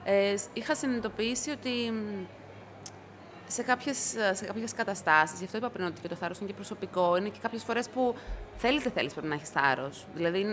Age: 20-39